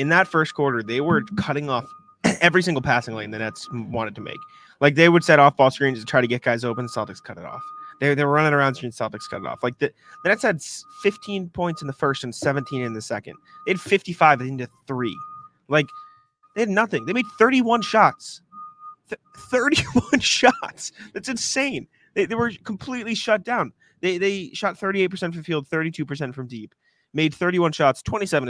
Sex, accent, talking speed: male, American, 200 wpm